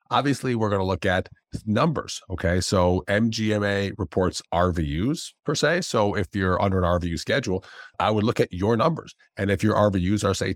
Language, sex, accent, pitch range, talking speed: English, male, American, 85-110 Hz, 180 wpm